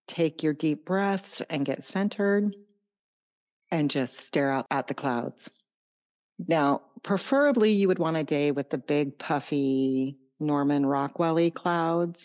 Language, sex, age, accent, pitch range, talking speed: English, female, 40-59, American, 145-200 Hz, 135 wpm